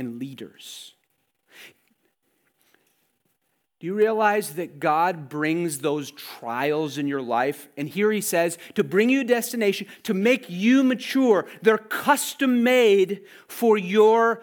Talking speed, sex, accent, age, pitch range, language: 130 wpm, male, American, 40-59, 150-205 Hz, English